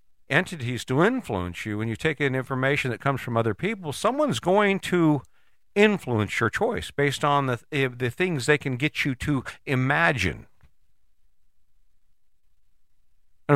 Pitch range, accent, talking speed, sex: 105-145 Hz, American, 140 wpm, male